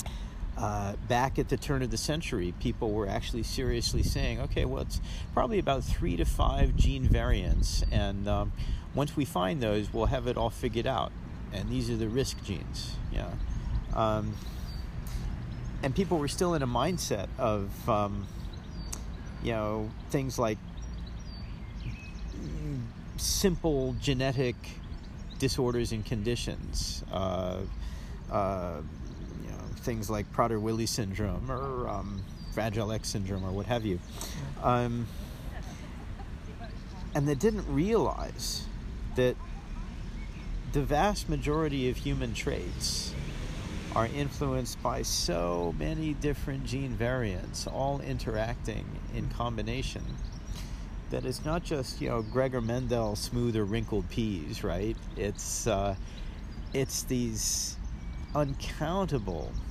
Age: 50-69